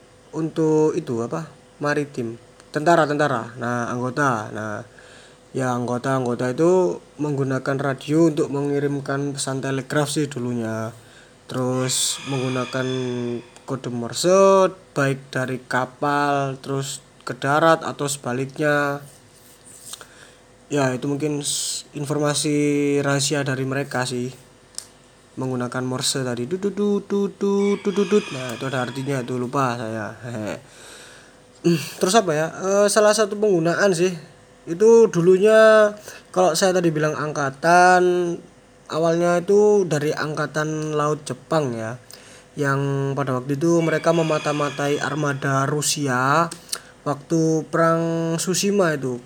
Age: 20-39